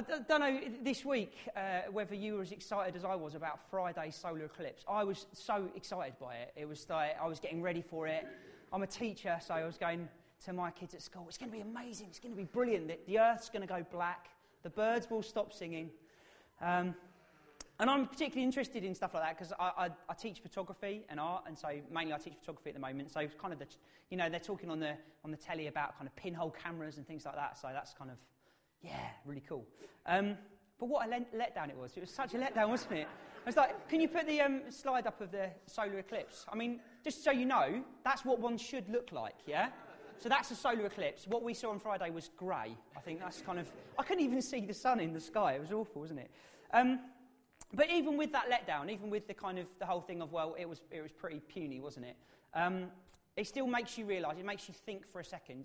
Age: 30-49